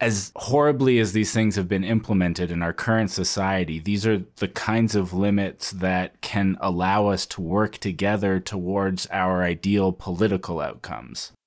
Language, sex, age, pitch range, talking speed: English, male, 20-39, 85-95 Hz, 155 wpm